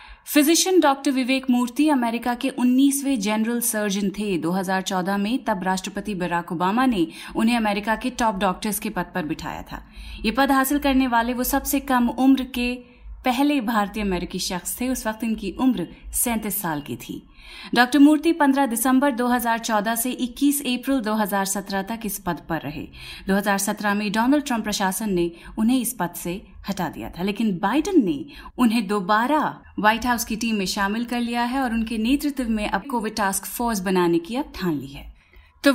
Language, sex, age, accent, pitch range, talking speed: Hindi, female, 30-49, native, 200-265 Hz, 175 wpm